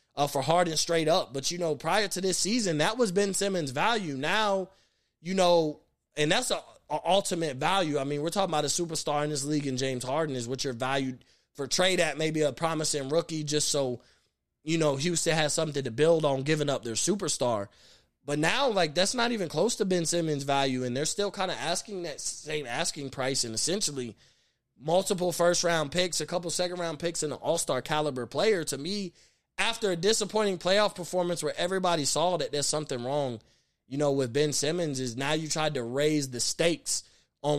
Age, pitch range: 20-39, 135-170 Hz